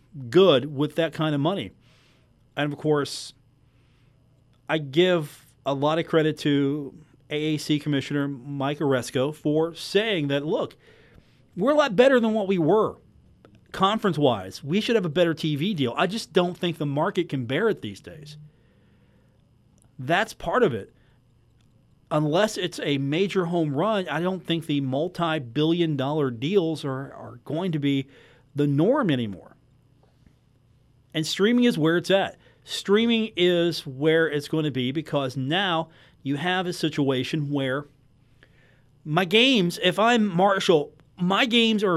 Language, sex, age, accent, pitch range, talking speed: English, male, 40-59, American, 135-180 Hz, 150 wpm